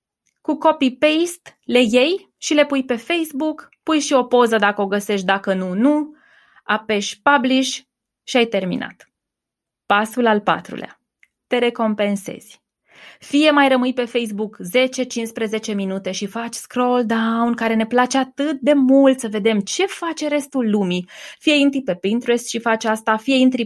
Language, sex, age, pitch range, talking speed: Romanian, female, 20-39, 200-270 Hz, 155 wpm